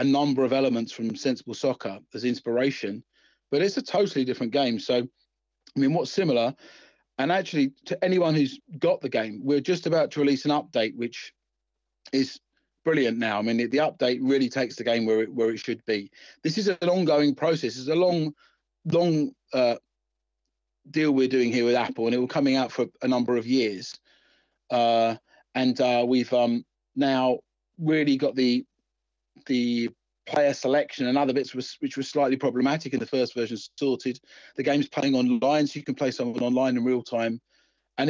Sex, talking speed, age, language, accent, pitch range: male, 190 wpm, 30-49, English, British, 120-145 Hz